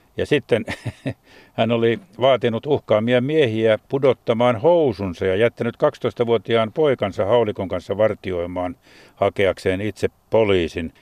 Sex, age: male, 60-79